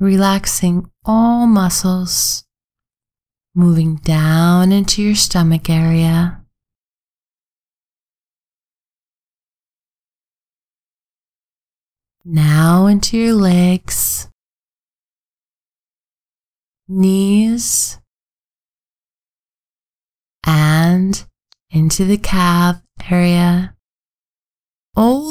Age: 30-49